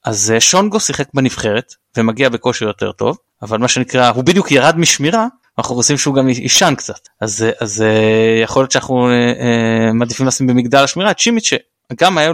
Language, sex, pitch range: Hebrew, male, 115-150 Hz